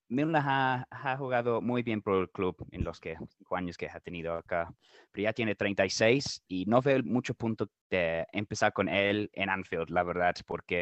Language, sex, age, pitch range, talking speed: Spanish, male, 20-39, 105-135 Hz, 200 wpm